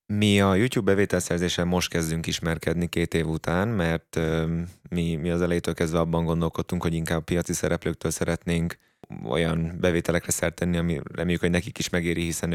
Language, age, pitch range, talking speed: Hungarian, 20-39, 80-90 Hz, 165 wpm